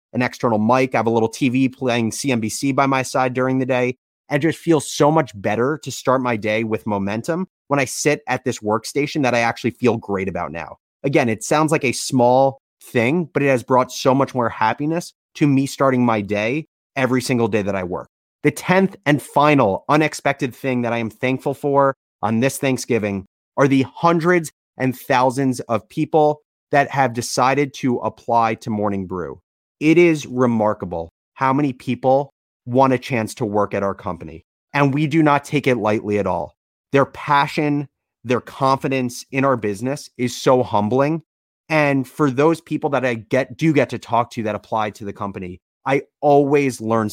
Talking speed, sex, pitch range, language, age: 190 wpm, male, 110-140 Hz, English, 30-49